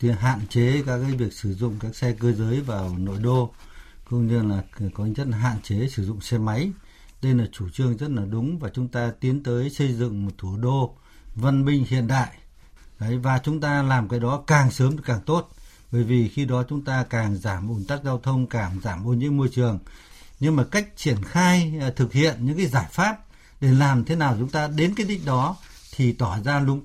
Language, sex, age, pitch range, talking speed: Vietnamese, male, 60-79, 120-170 Hz, 230 wpm